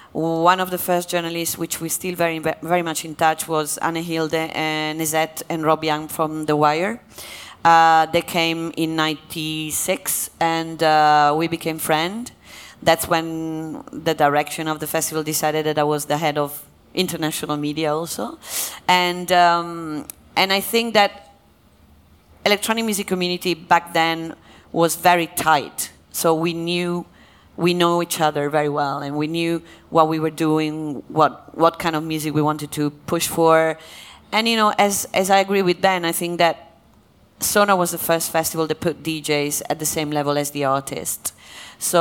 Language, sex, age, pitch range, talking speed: English, female, 30-49, 150-170 Hz, 170 wpm